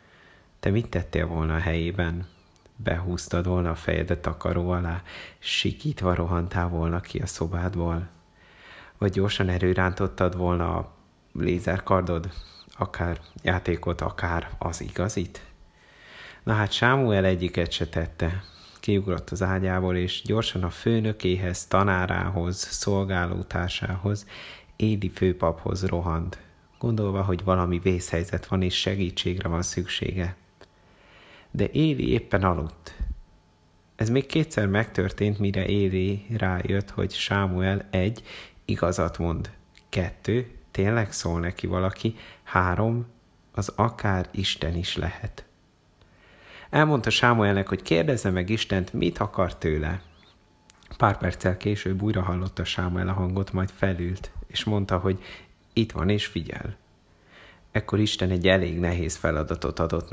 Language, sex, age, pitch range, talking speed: Hungarian, male, 30-49, 85-100 Hz, 120 wpm